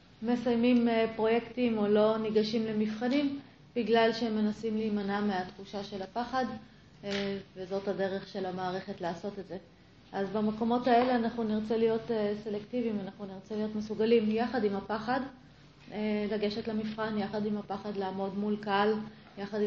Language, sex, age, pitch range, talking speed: Hebrew, female, 30-49, 200-230 Hz, 130 wpm